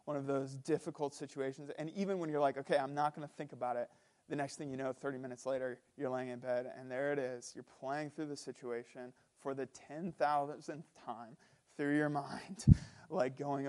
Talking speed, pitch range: 210 wpm, 135-180 Hz